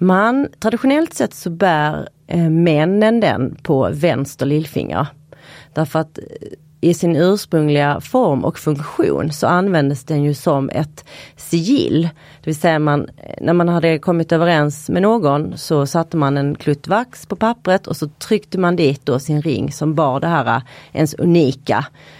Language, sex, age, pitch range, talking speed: Swedish, female, 30-49, 140-175 Hz, 160 wpm